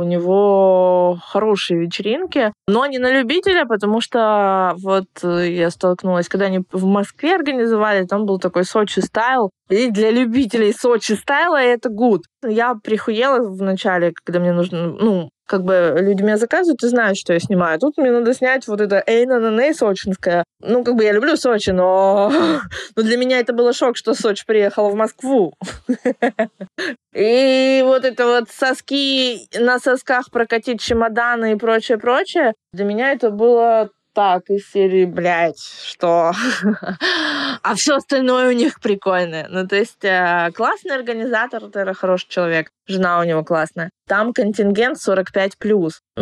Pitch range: 190-245 Hz